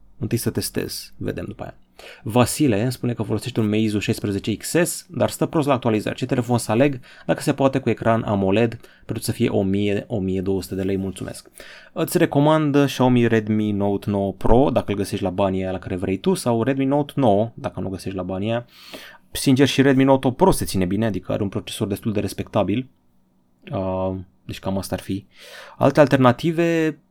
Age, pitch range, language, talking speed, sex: 20-39, 100-135 Hz, Romanian, 190 wpm, male